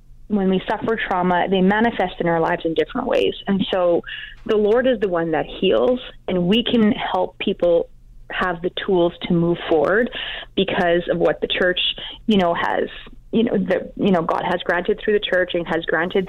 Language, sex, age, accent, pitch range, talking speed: English, female, 30-49, American, 180-220 Hz, 200 wpm